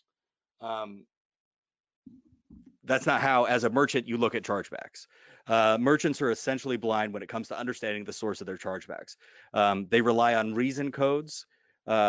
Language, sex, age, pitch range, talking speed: English, male, 30-49, 105-130 Hz, 165 wpm